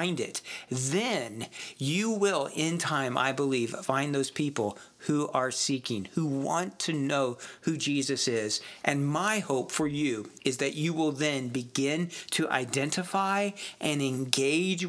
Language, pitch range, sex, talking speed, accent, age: English, 135-160 Hz, male, 150 wpm, American, 50-69